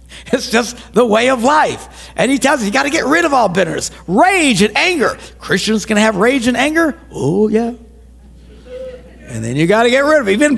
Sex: male